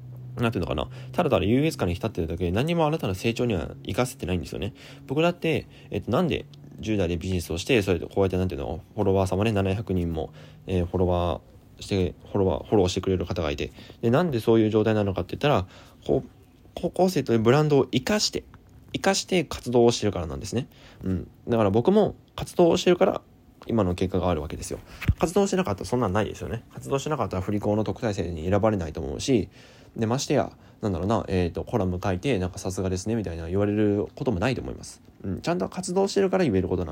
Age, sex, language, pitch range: 20-39, male, Japanese, 90-125 Hz